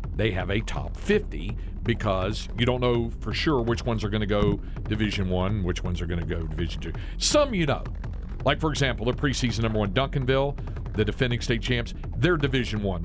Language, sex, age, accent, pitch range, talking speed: English, male, 50-69, American, 100-140 Hz, 205 wpm